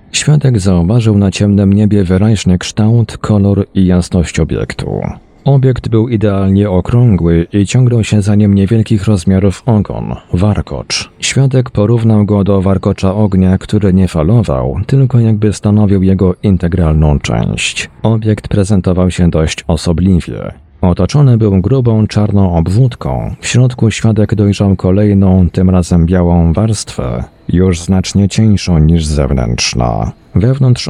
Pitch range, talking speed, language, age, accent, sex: 90-110 Hz, 125 wpm, Polish, 40-59, native, male